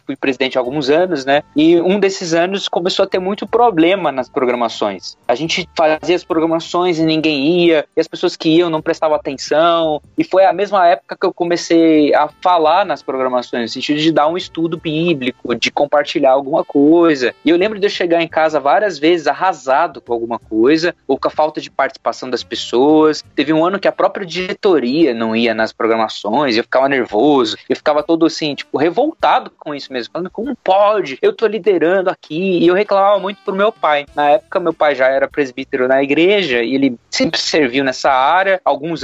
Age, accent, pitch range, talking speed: 20-39, Brazilian, 145-185 Hz, 205 wpm